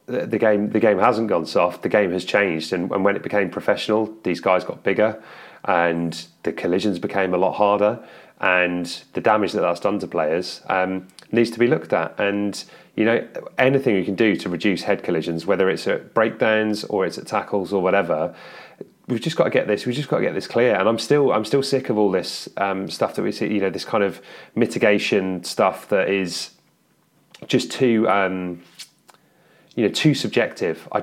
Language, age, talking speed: English, 30-49, 205 wpm